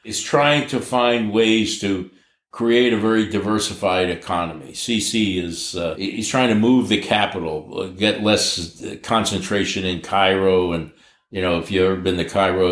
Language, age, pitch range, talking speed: English, 60-79, 95-110 Hz, 160 wpm